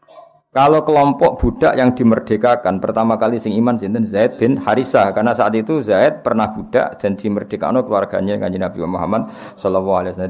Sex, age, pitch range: male, 50-69, 100-135 Hz